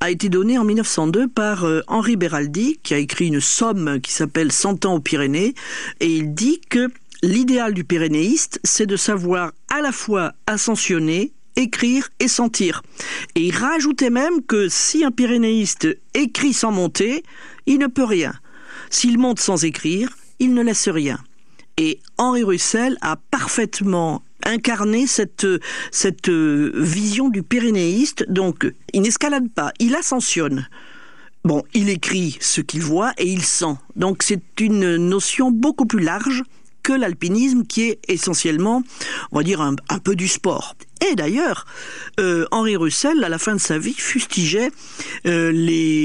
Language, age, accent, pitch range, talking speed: French, 50-69, French, 165-245 Hz, 160 wpm